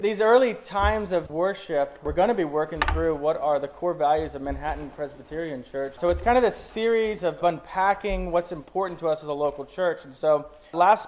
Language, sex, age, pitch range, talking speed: English, male, 20-39, 150-190 Hz, 210 wpm